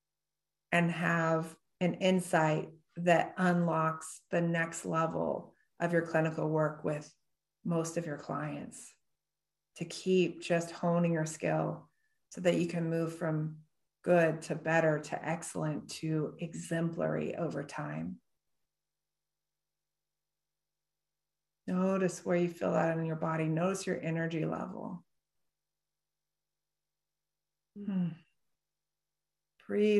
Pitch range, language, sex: 165-195 Hz, English, female